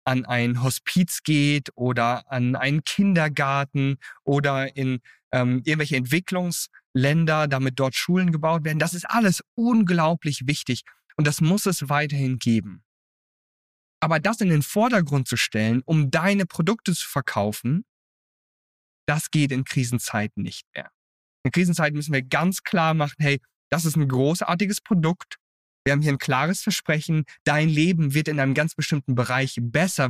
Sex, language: male, German